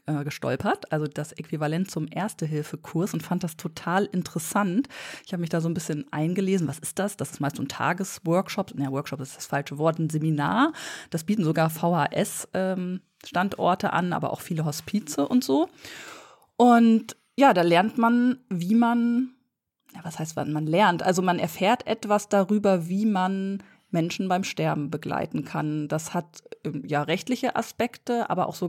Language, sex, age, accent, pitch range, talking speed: German, female, 20-39, German, 160-200 Hz, 170 wpm